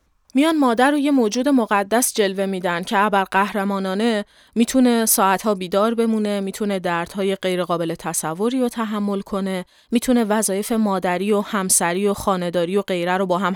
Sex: female